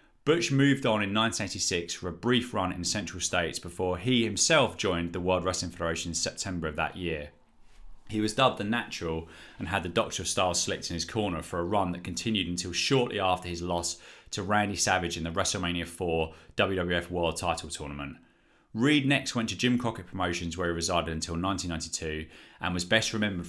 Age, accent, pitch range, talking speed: 30-49, British, 85-110 Hz, 200 wpm